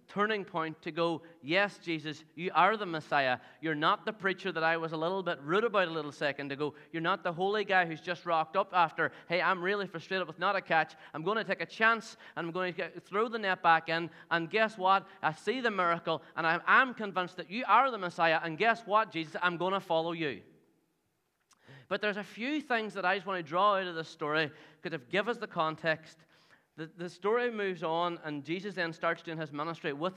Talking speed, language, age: 235 wpm, English, 30-49